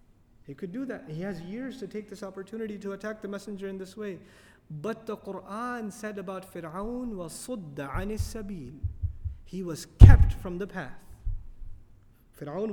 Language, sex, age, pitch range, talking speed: English, male, 30-49, 170-235 Hz, 155 wpm